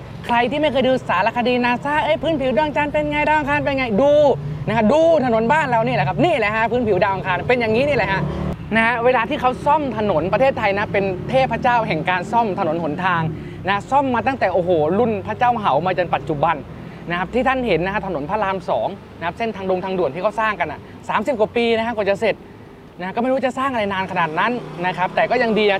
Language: Thai